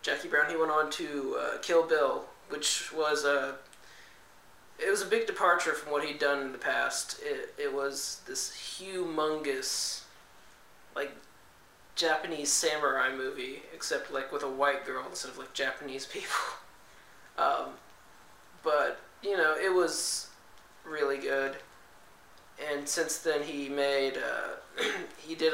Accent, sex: American, male